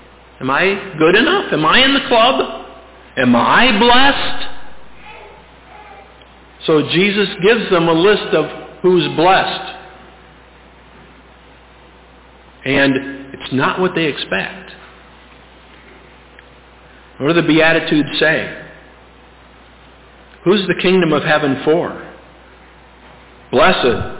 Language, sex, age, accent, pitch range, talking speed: English, male, 50-69, American, 130-185 Hz, 95 wpm